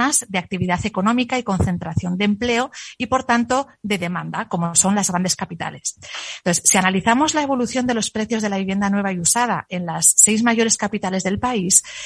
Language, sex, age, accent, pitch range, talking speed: Spanish, female, 30-49, Spanish, 185-250 Hz, 190 wpm